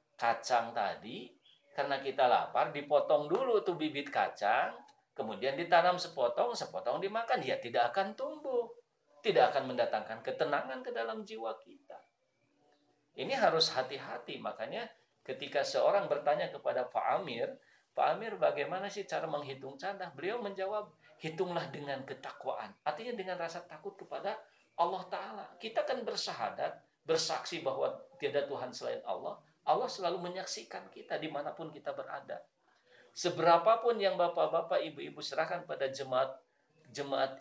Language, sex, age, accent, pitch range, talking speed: Indonesian, male, 50-69, native, 130-185 Hz, 125 wpm